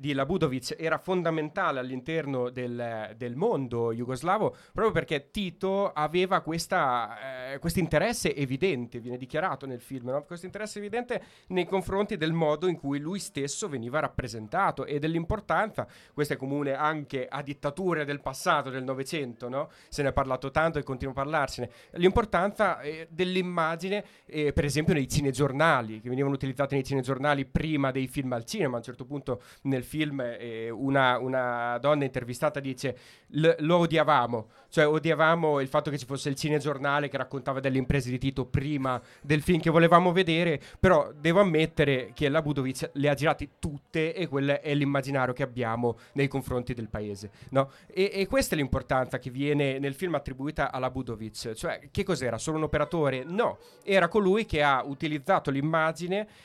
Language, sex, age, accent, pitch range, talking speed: Italian, male, 30-49, native, 130-165 Hz, 160 wpm